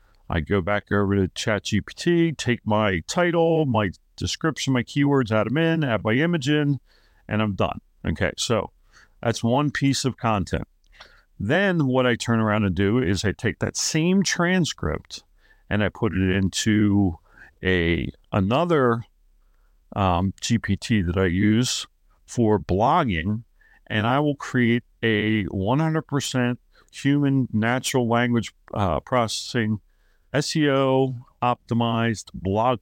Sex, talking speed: male, 130 wpm